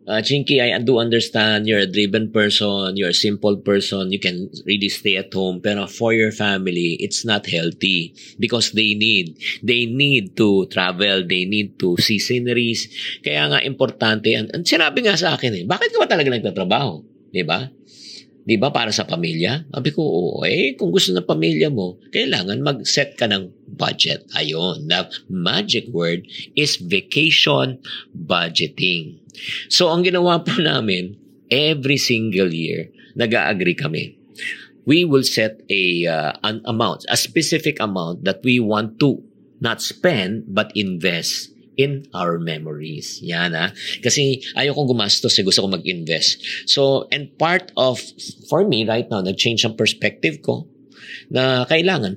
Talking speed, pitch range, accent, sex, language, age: 155 wpm, 95-130 Hz, native, male, Filipino, 50-69